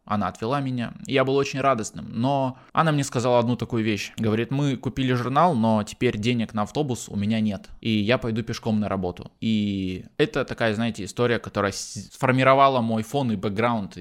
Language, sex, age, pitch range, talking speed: Russian, male, 20-39, 105-130 Hz, 185 wpm